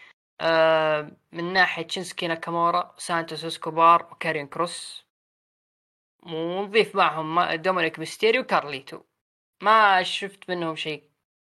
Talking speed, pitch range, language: 95 wpm, 150-180 Hz, Arabic